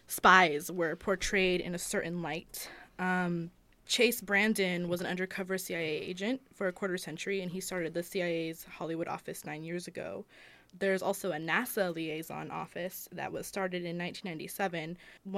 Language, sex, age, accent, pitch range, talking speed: English, female, 20-39, American, 170-195 Hz, 155 wpm